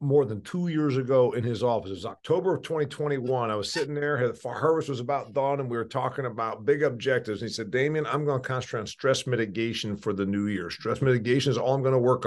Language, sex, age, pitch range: English, male, 50-69, 120-165 Hz